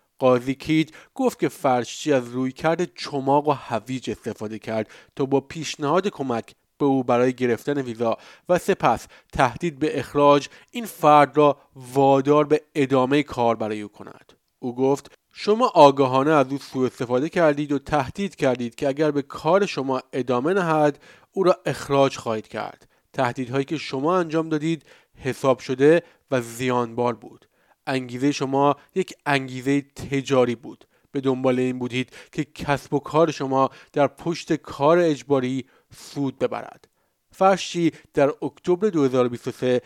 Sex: male